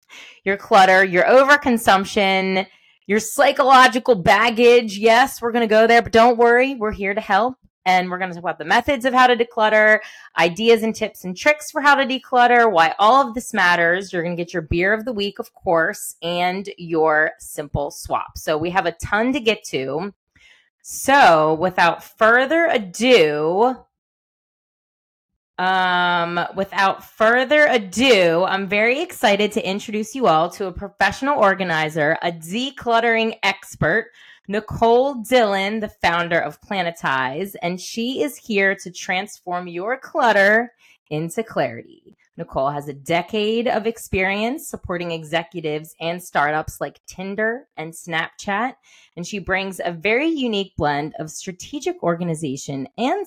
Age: 30-49